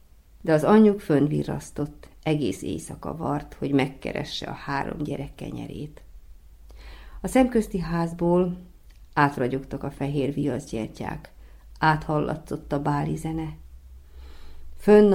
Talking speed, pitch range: 95 wpm, 135-170 Hz